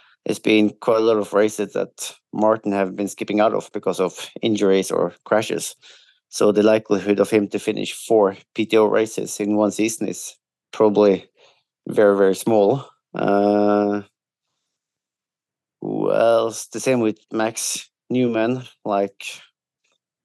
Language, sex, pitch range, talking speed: English, male, 105-115 Hz, 135 wpm